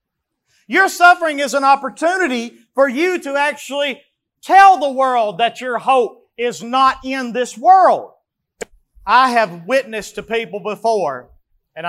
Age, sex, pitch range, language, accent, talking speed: 40-59, male, 200-275 Hz, English, American, 135 wpm